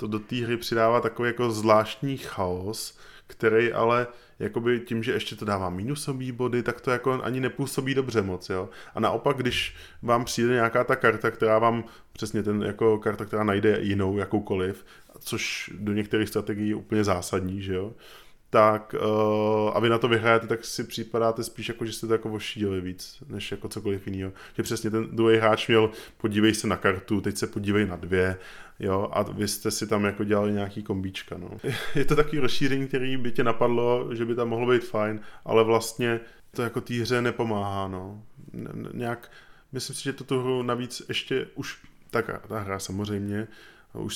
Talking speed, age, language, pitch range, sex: 180 wpm, 20-39, Czech, 100-115 Hz, male